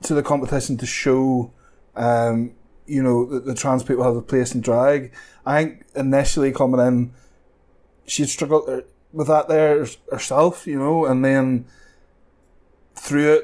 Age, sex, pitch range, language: 20-39, male, 125-145 Hz, English